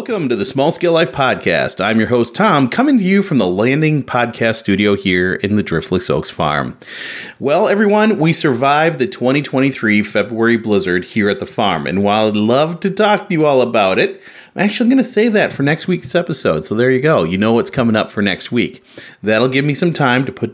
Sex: male